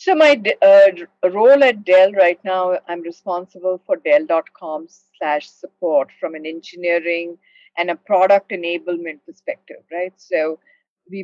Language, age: English, 50-69